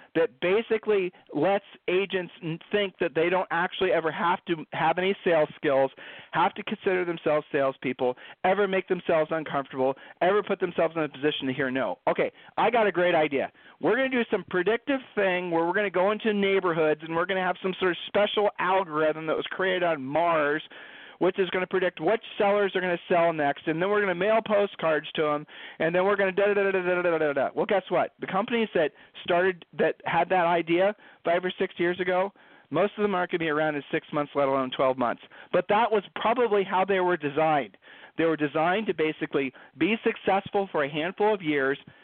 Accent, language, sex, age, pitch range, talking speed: American, English, male, 40-59, 155-195 Hz, 220 wpm